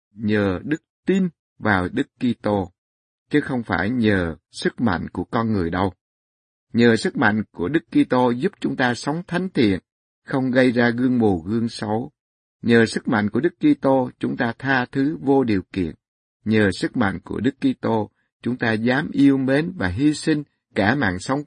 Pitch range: 100-130 Hz